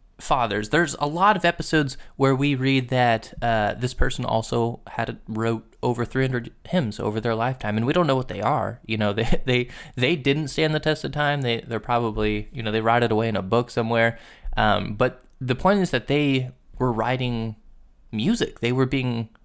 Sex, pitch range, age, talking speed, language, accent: male, 115-145 Hz, 20-39, 210 wpm, English, American